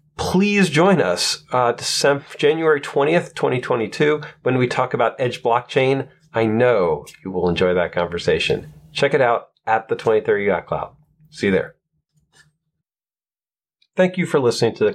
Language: English